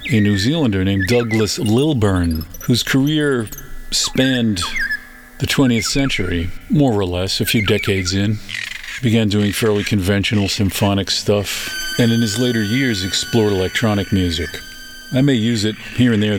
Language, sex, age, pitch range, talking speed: English, male, 50-69, 95-120 Hz, 150 wpm